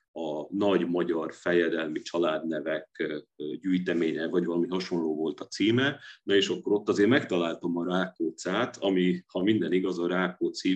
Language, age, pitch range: Hungarian, 40-59, 85-95 Hz